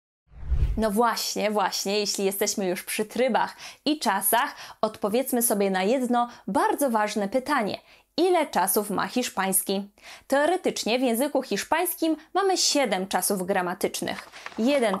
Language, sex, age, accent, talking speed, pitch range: Polish, female, 20-39, native, 120 wpm, 205-280 Hz